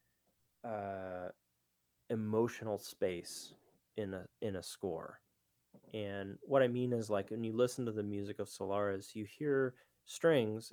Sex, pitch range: male, 80-120 Hz